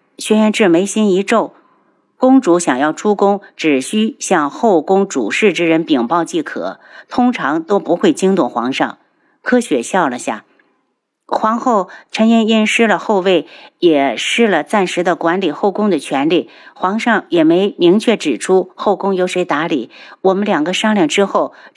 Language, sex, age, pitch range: Chinese, female, 50-69, 180-245 Hz